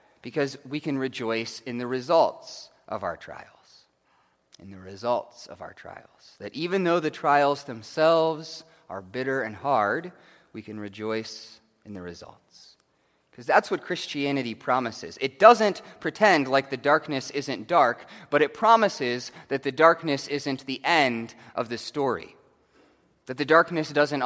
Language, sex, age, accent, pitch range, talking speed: English, male, 30-49, American, 120-170 Hz, 150 wpm